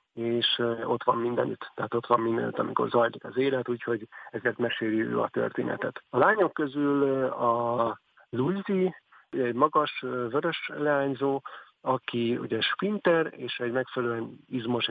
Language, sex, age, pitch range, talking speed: Hungarian, male, 50-69, 120-135 Hz, 135 wpm